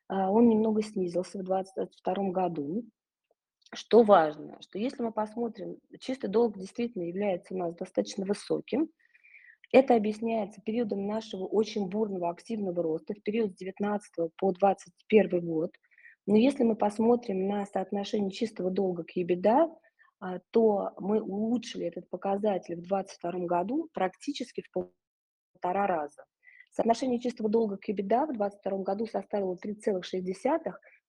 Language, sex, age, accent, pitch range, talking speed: Russian, female, 20-39, native, 185-230 Hz, 130 wpm